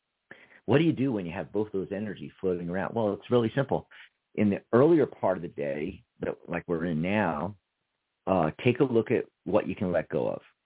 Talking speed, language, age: 215 wpm, English, 40-59